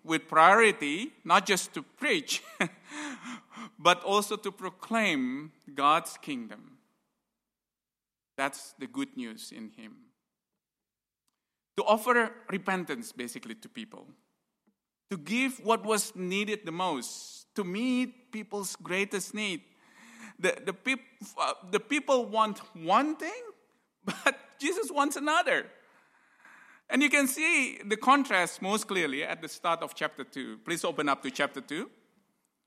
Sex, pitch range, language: male, 195-265 Hz, Chinese